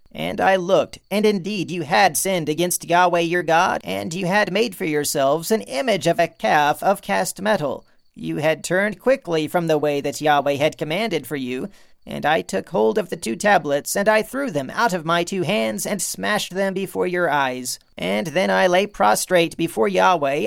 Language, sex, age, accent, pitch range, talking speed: English, male, 40-59, American, 155-200 Hz, 200 wpm